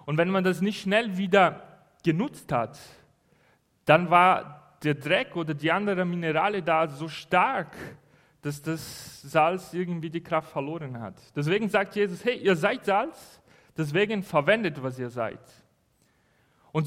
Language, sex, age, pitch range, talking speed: German, male, 40-59, 165-220 Hz, 145 wpm